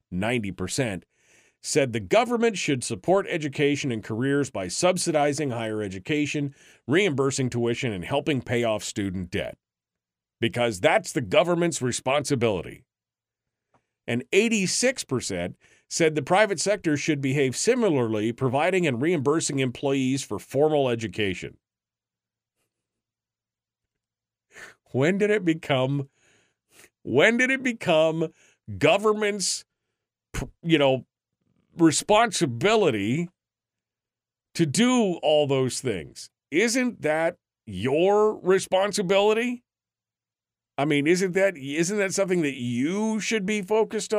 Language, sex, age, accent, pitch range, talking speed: English, male, 50-69, American, 120-185 Hz, 100 wpm